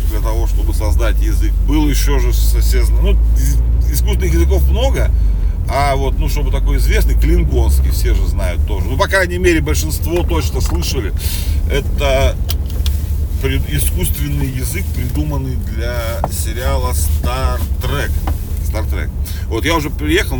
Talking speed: 130 wpm